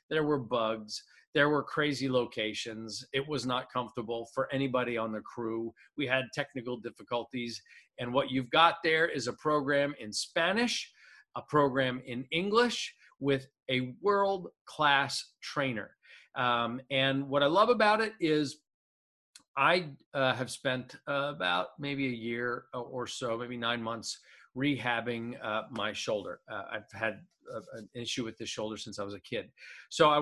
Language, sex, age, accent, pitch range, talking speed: English, male, 40-59, American, 120-155 Hz, 160 wpm